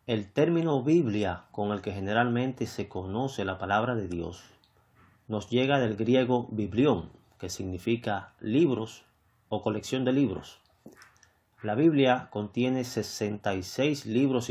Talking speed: 125 wpm